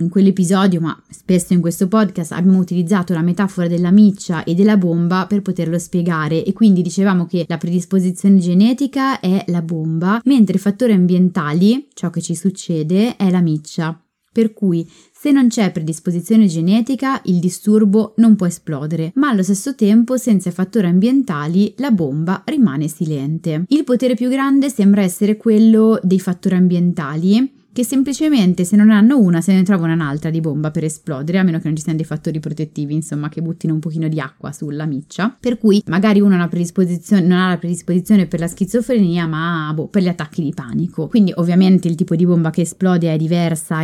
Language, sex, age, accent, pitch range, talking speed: Italian, female, 20-39, native, 170-210 Hz, 185 wpm